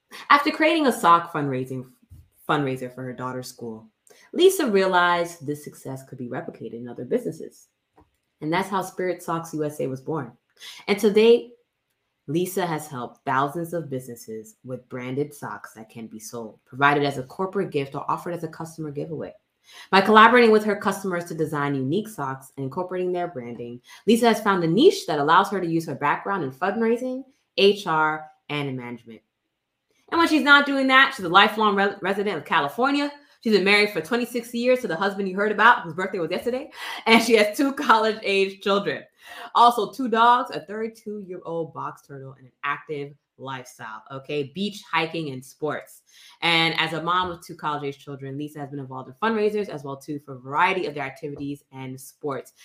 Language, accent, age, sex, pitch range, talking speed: English, American, 20-39, female, 135-205 Hz, 185 wpm